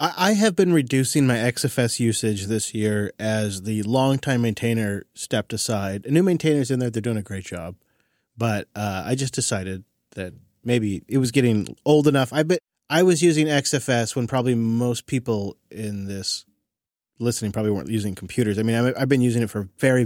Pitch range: 105-140 Hz